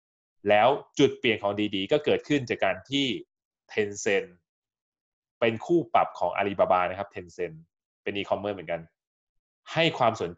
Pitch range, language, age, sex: 95-125 Hz, Thai, 20-39, male